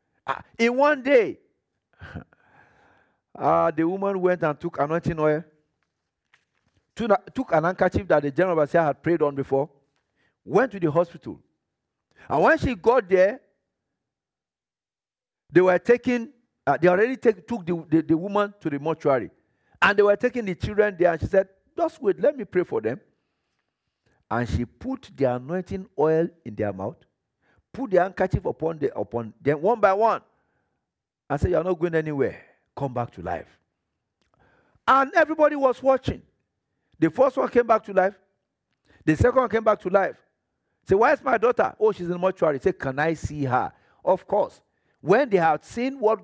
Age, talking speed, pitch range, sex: 50-69, 165 wpm, 155-220 Hz, male